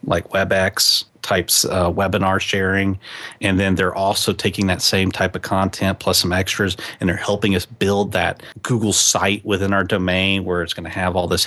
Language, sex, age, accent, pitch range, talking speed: English, male, 30-49, American, 90-105 Hz, 195 wpm